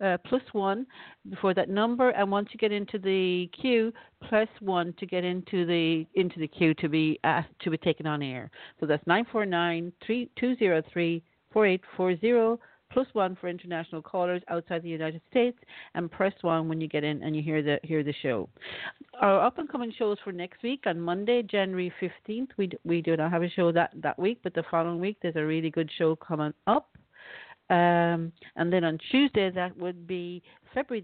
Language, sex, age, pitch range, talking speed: English, female, 50-69, 165-210 Hz, 210 wpm